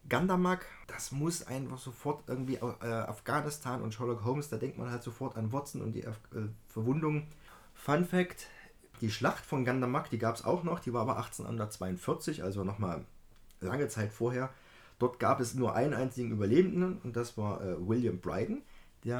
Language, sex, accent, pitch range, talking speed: German, male, German, 105-135 Hz, 180 wpm